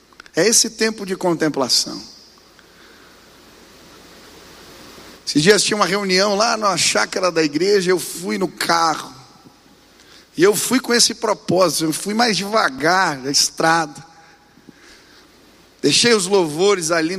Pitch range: 170-215 Hz